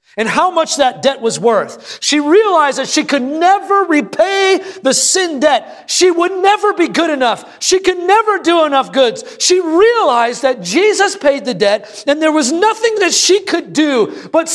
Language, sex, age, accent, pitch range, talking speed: English, male, 40-59, American, 190-285 Hz, 185 wpm